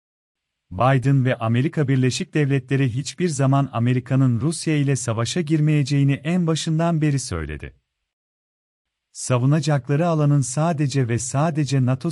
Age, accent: 40-59, native